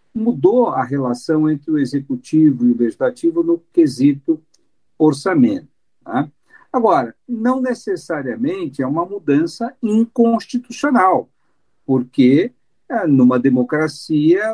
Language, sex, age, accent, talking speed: Portuguese, male, 50-69, Brazilian, 90 wpm